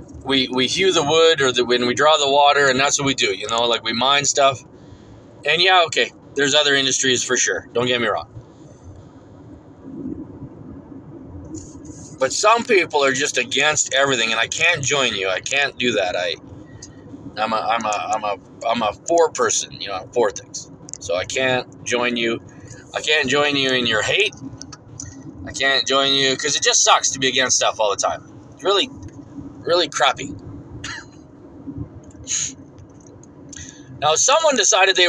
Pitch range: 125-160 Hz